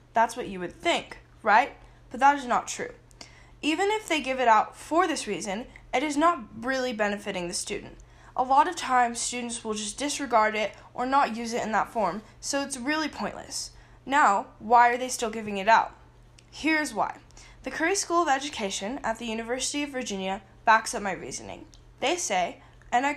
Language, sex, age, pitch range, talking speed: English, female, 10-29, 220-280 Hz, 195 wpm